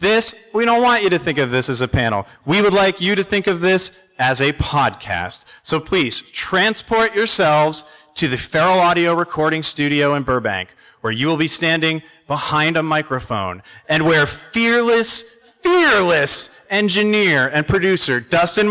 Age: 40-59